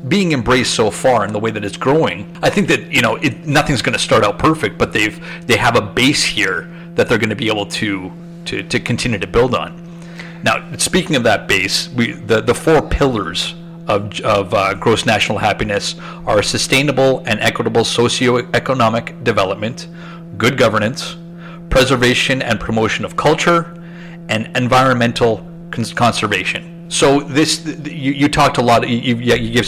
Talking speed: 170 wpm